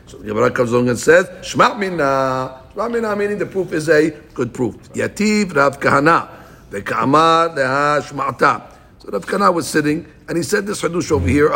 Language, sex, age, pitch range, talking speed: English, male, 60-79, 135-180 Hz, 170 wpm